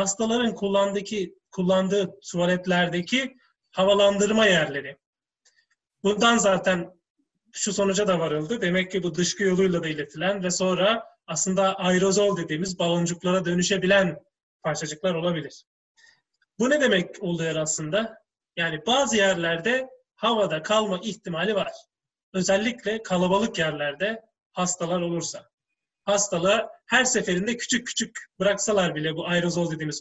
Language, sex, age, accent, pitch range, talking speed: Turkish, male, 30-49, native, 175-215 Hz, 110 wpm